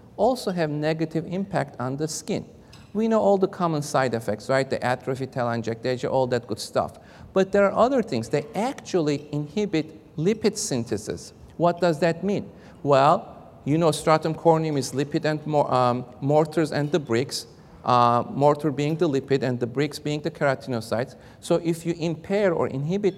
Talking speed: 170 wpm